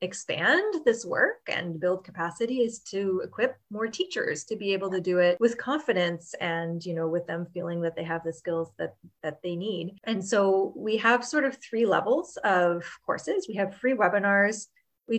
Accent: American